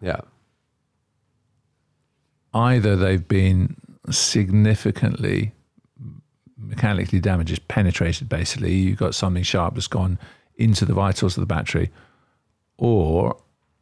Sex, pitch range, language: male, 95-115 Hz, English